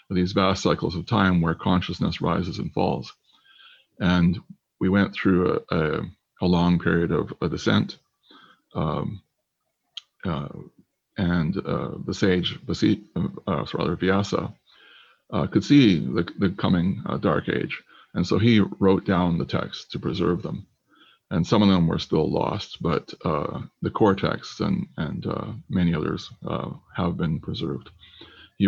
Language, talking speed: English, 145 wpm